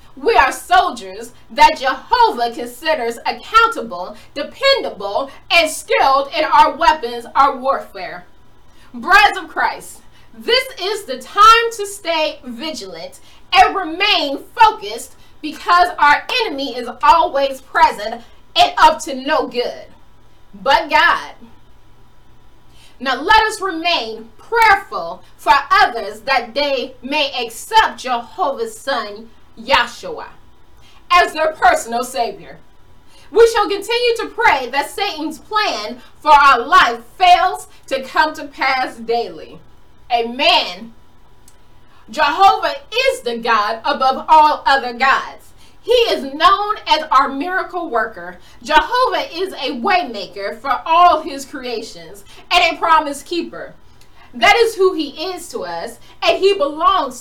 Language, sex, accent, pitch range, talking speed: English, female, American, 265-390 Hz, 120 wpm